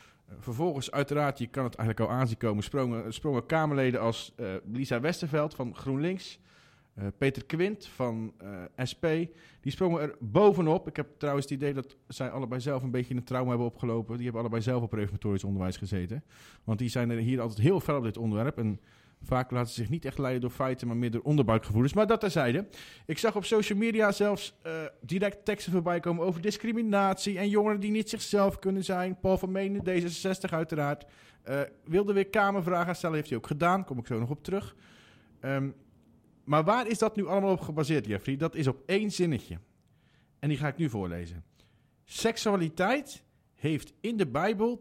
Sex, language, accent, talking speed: male, Dutch, Dutch, 195 wpm